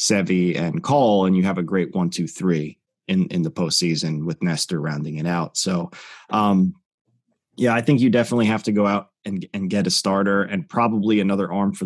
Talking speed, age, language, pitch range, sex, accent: 205 wpm, 20-39, English, 95-130 Hz, male, American